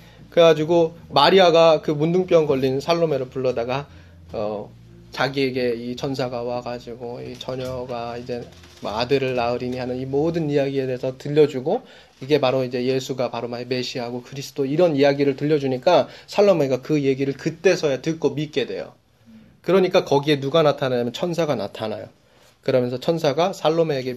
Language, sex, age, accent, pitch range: Korean, male, 20-39, native, 120-160 Hz